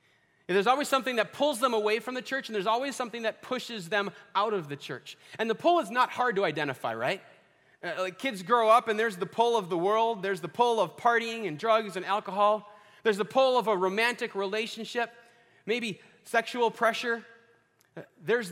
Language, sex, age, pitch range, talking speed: English, male, 30-49, 185-230 Hz, 200 wpm